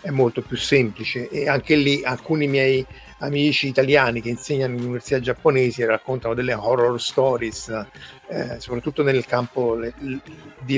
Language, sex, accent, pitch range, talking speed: Italian, male, native, 120-145 Hz, 150 wpm